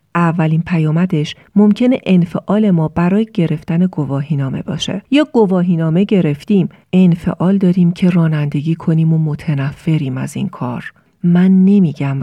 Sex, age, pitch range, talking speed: female, 40-59, 155-200 Hz, 130 wpm